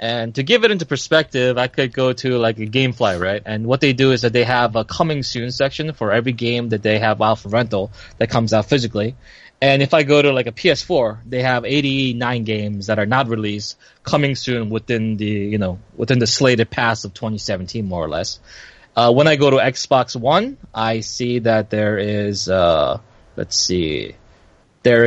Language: English